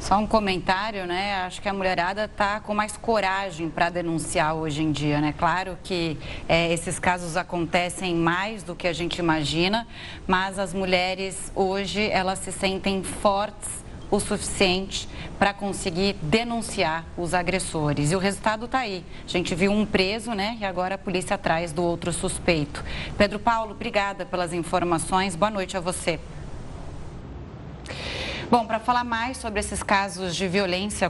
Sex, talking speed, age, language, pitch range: female, 155 wpm, 30-49, Portuguese, 180-215 Hz